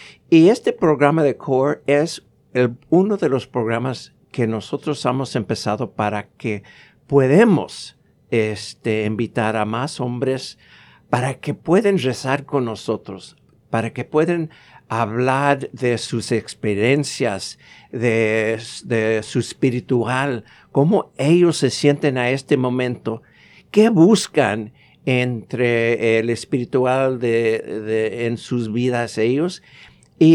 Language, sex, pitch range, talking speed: English, male, 115-145 Hz, 115 wpm